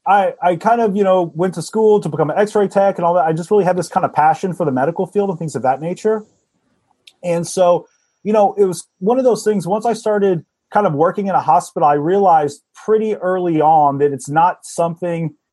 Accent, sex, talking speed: American, male, 240 wpm